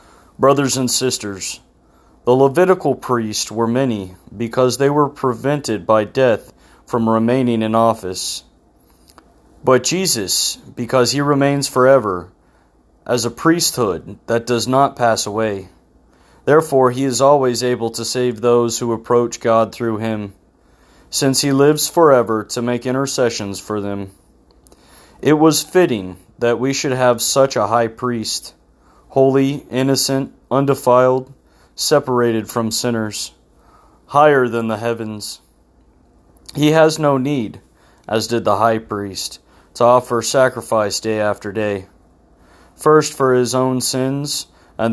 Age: 30-49